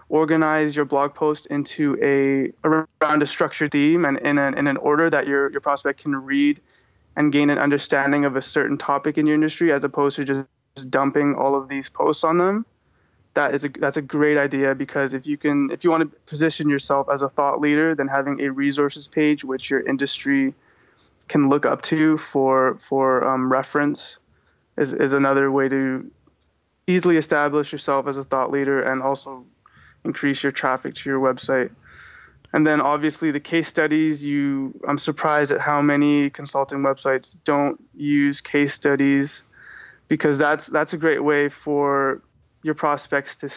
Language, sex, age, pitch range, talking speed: English, male, 20-39, 135-150 Hz, 180 wpm